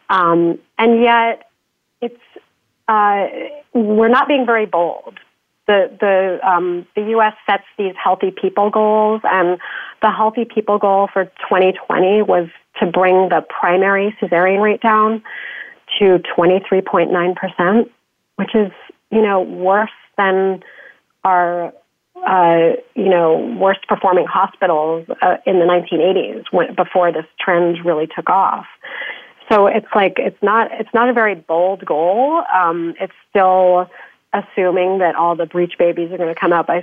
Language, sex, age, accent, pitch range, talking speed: English, female, 30-49, American, 175-220 Hz, 140 wpm